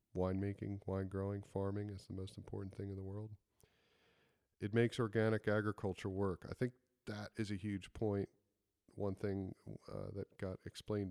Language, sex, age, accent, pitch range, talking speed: English, male, 40-59, American, 95-105 Hz, 160 wpm